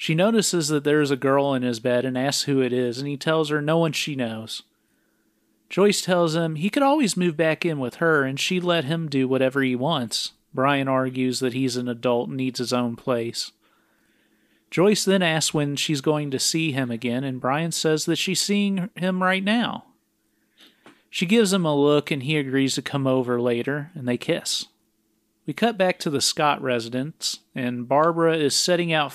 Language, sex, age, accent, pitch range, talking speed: English, male, 40-59, American, 130-165 Hz, 200 wpm